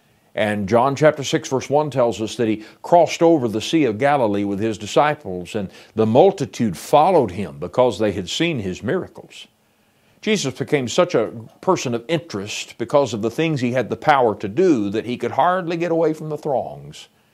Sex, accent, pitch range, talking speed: male, American, 110-155 Hz, 195 wpm